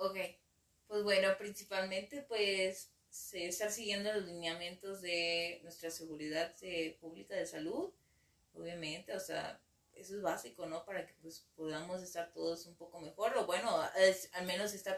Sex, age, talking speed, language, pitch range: female, 20-39, 150 wpm, Spanish, 165-195 Hz